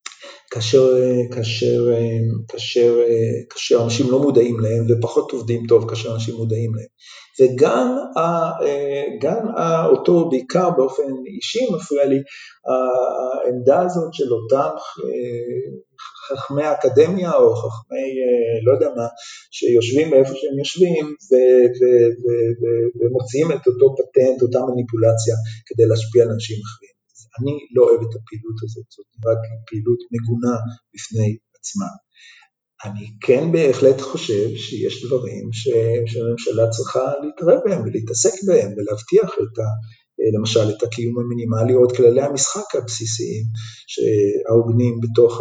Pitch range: 115-150 Hz